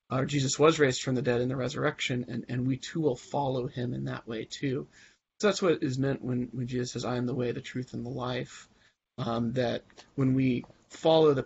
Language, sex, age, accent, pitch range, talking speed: English, male, 30-49, American, 120-135 Hz, 235 wpm